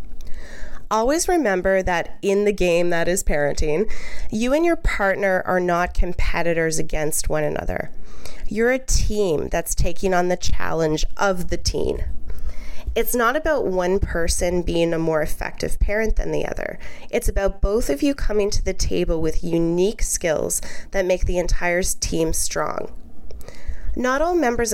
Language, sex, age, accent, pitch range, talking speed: English, female, 20-39, American, 160-210 Hz, 155 wpm